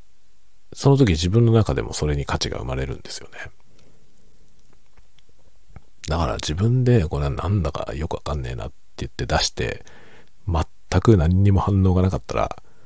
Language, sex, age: Japanese, male, 50-69